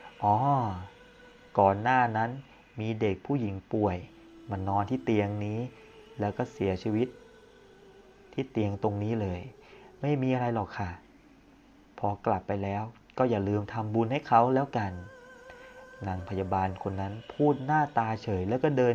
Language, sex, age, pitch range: Thai, male, 30-49, 100-120 Hz